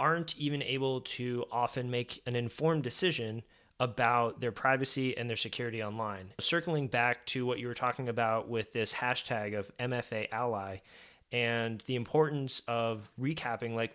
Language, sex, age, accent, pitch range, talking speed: English, male, 20-39, American, 115-140 Hz, 155 wpm